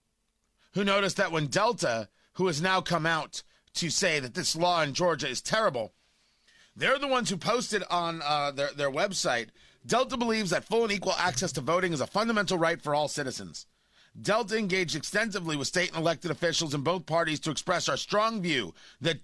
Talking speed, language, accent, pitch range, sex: 195 wpm, English, American, 160-205 Hz, male